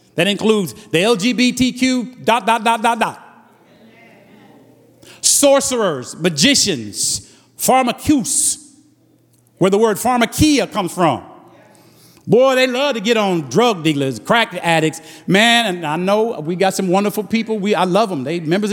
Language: English